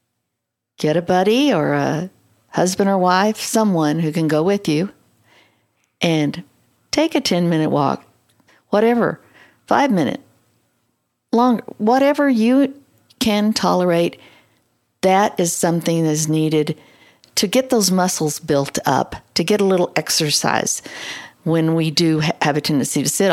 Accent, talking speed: American, 130 wpm